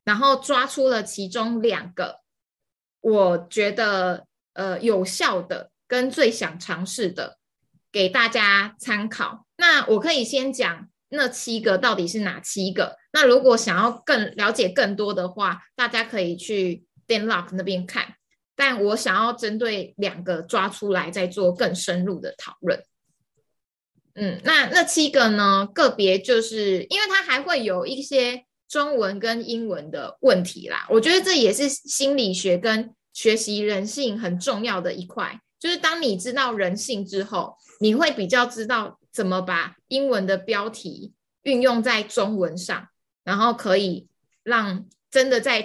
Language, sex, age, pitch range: Chinese, female, 20-39, 190-250 Hz